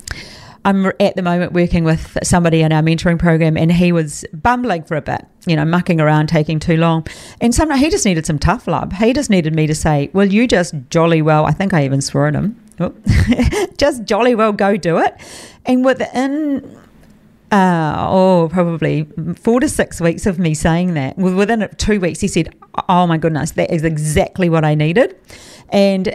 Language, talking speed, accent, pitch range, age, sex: English, 195 wpm, Australian, 160-200 Hz, 40-59, female